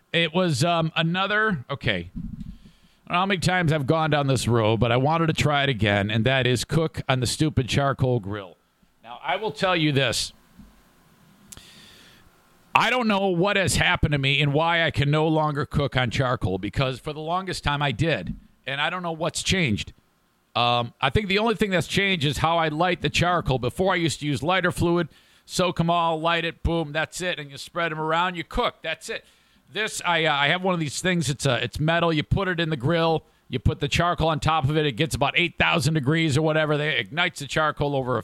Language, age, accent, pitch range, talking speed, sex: English, 50-69, American, 140-180 Hz, 230 wpm, male